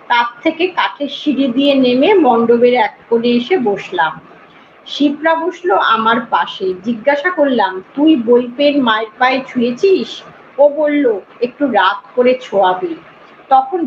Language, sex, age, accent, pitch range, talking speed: Bengali, female, 40-59, native, 240-335 Hz, 115 wpm